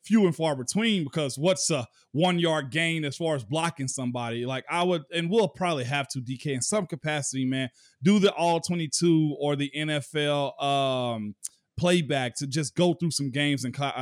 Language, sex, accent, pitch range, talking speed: English, male, American, 135-175 Hz, 190 wpm